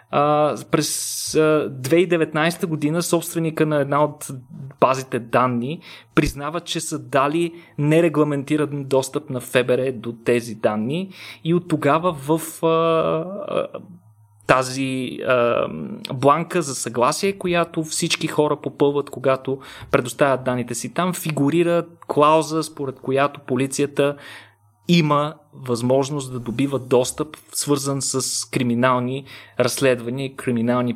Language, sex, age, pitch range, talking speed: Bulgarian, male, 30-49, 130-160 Hz, 110 wpm